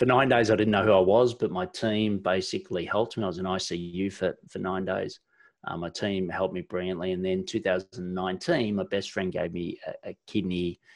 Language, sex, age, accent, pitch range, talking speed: English, male, 30-49, Australian, 90-110 Hz, 220 wpm